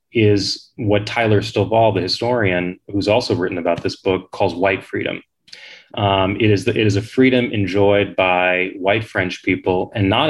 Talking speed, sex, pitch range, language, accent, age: 175 wpm, male, 95-120 Hz, English, American, 30-49